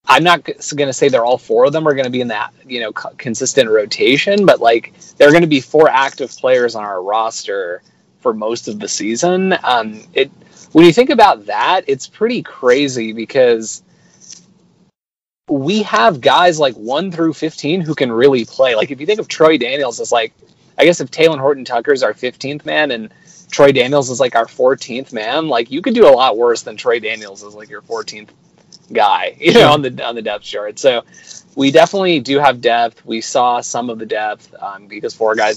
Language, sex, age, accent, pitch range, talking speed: English, male, 30-49, American, 120-180 Hz, 210 wpm